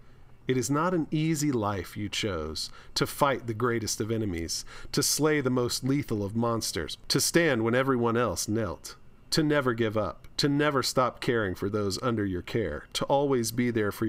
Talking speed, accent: 190 wpm, American